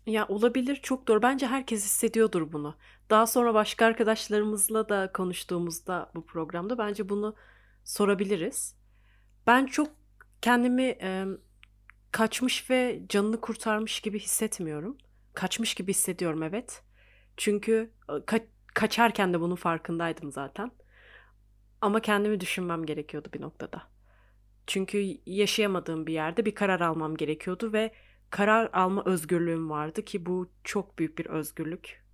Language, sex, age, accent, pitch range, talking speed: Turkish, female, 30-49, native, 150-220 Hz, 120 wpm